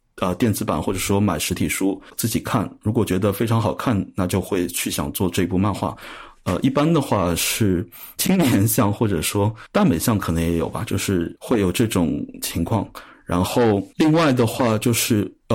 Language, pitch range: Chinese, 95-120 Hz